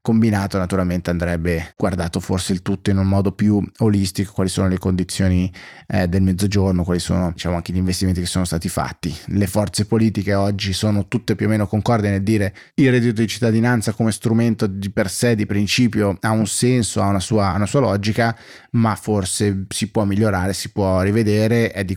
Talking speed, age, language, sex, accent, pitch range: 195 wpm, 20-39, Italian, male, native, 95-110 Hz